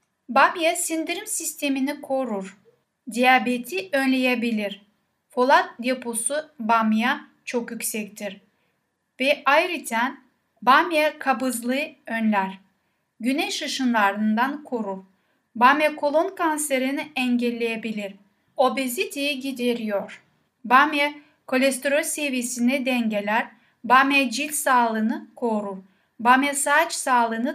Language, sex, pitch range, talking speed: Turkish, female, 230-290 Hz, 80 wpm